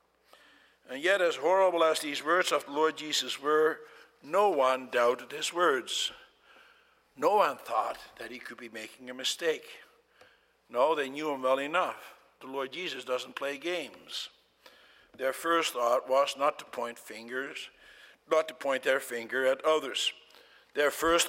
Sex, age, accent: male, 60-79, American